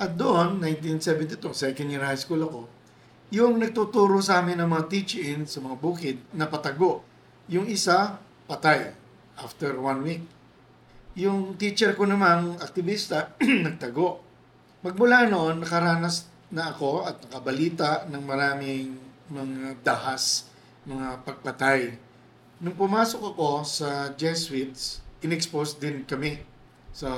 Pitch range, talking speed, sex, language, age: 140-175 Hz, 115 wpm, male, Filipino, 50-69